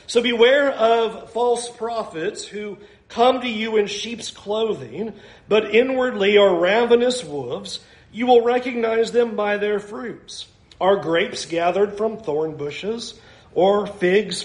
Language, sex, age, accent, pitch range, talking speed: English, male, 40-59, American, 195-235 Hz, 135 wpm